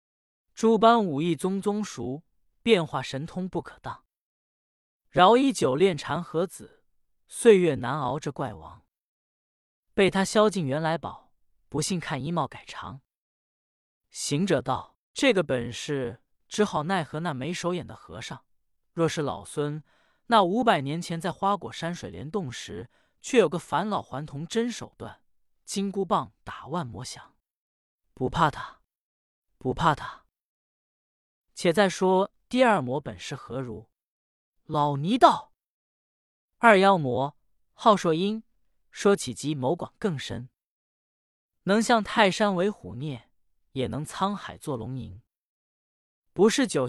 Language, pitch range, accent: Chinese, 135-200 Hz, native